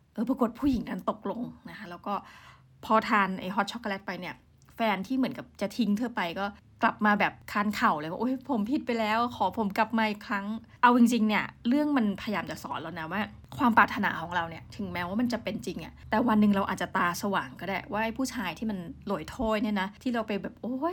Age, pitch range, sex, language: 20-39, 190-235 Hz, female, Thai